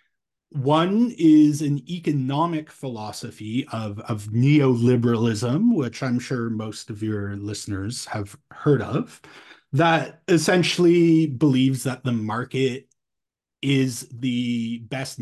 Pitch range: 115-150 Hz